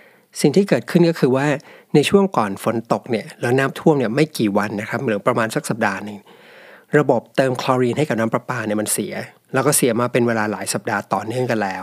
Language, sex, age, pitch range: Thai, male, 60-79, 110-145 Hz